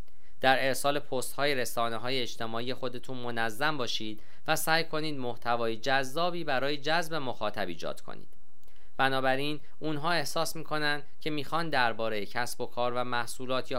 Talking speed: 145 wpm